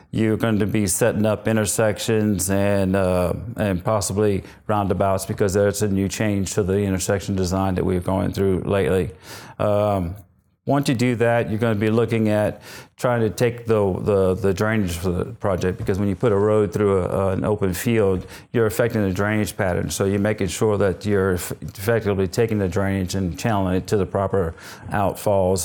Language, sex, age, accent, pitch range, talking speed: English, male, 40-59, American, 95-110 Hz, 190 wpm